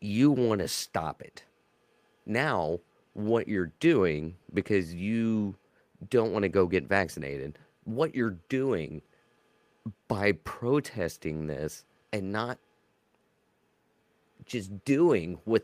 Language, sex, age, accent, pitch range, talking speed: English, male, 30-49, American, 95-120 Hz, 105 wpm